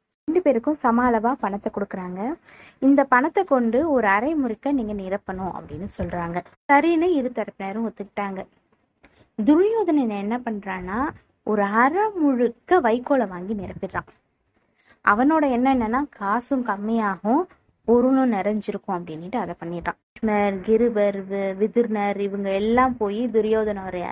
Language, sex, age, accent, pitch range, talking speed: Tamil, female, 20-39, native, 195-260 Hz, 105 wpm